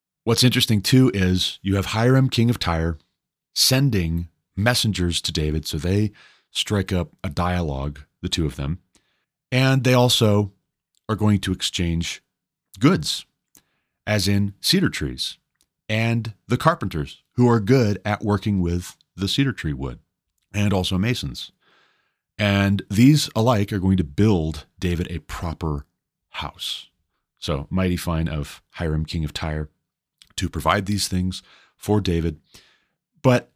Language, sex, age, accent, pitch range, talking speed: English, male, 30-49, American, 80-105 Hz, 140 wpm